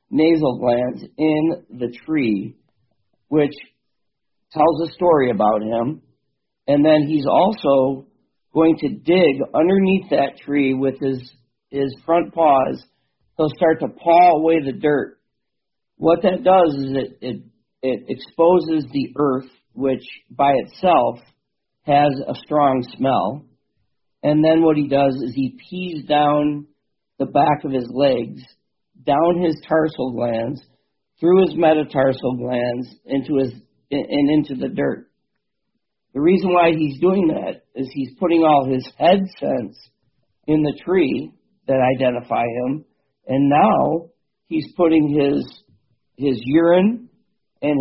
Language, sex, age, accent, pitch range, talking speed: English, male, 50-69, American, 135-165 Hz, 130 wpm